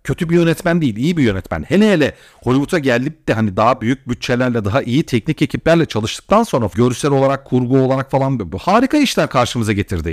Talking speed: 190 wpm